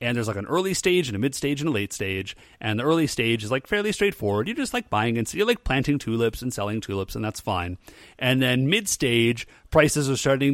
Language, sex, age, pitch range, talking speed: English, male, 30-49, 115-165 Hz, 240 wpm